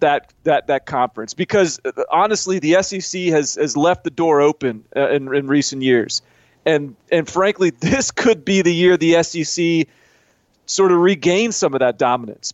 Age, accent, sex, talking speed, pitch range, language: 30-49, American, male, 175 wpm, 135-165 Hz, English